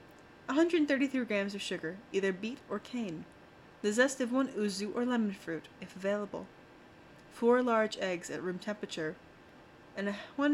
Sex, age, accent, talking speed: female, 20-39, American, 150 wpm